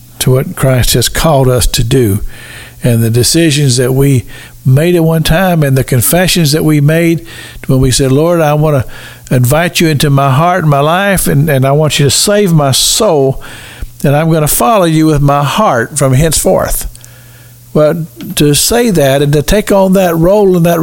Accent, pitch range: American, 130-180 Hz